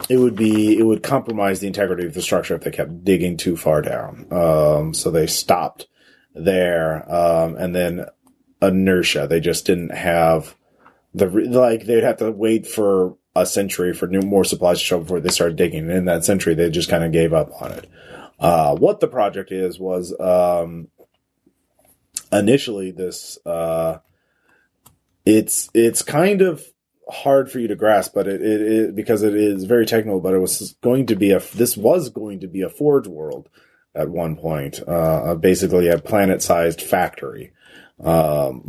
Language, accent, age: English, American, 30-49